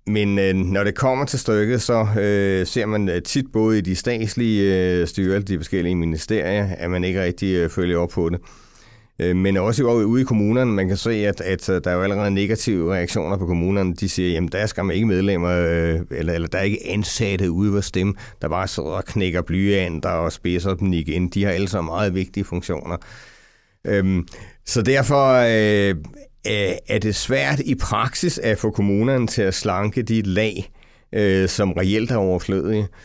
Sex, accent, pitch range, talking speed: male, Danish, 90-110 Hz, 175 wpm